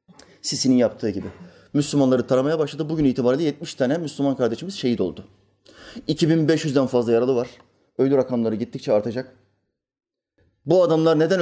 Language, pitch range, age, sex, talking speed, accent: Turkish, 135-200 Hz, 30-49, male, 130 wpm, native